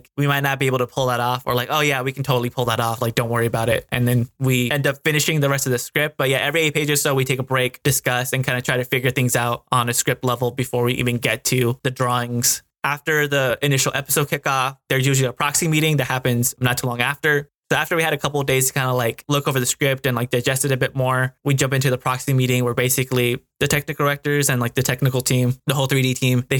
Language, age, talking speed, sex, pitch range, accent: English, 20-39, 285 wpm, male, 125-140 Hz, American